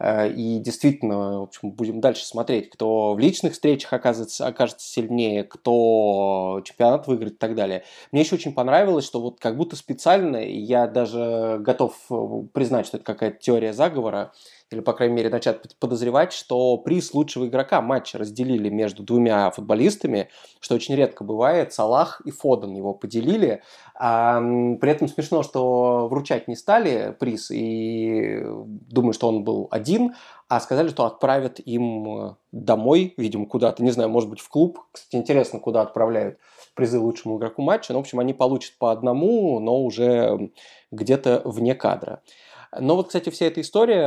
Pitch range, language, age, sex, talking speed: 110-130 Hz, Russian, 20-39, male, 155 wpm